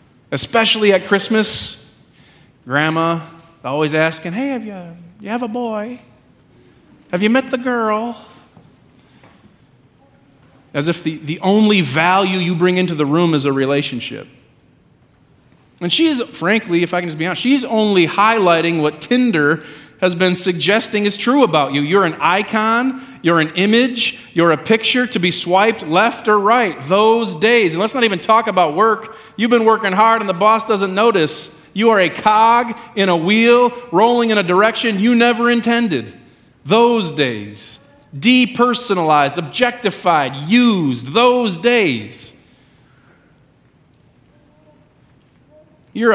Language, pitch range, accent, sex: English, 155-230 Hz, American, male